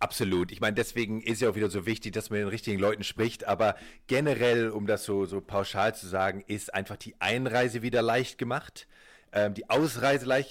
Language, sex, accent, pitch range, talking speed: German, male, German, 95-115 Hz, 200 wpm